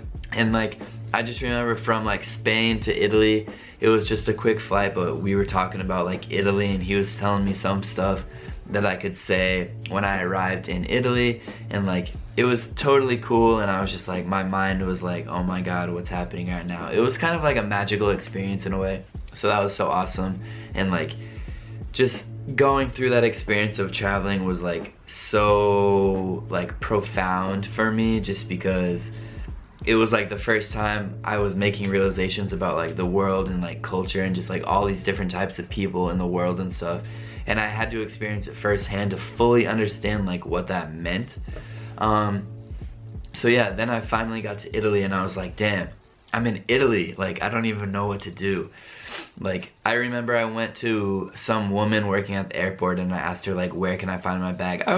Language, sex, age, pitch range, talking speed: Italian, male, 20-39, 95-110 Hz, 205 wpm